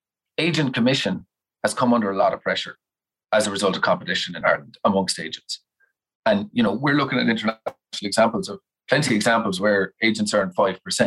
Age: 30-49